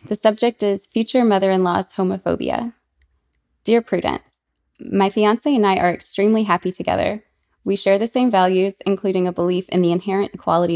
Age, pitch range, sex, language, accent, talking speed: 20-39, 170-205 Hz, female, English, American, 155 wpm